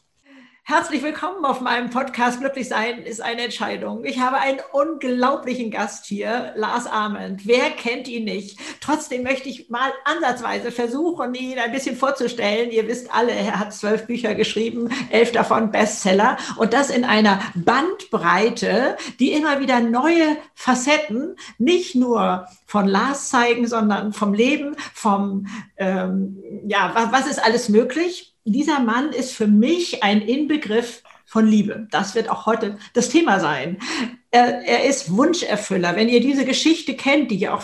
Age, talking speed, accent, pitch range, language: 50-69, 155 wpm, German, 220-275 Hz, German